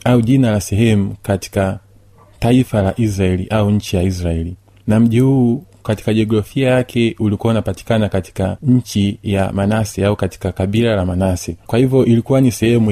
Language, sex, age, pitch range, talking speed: Swahili, male, 30-49, 100-115 Hz, 150 wpm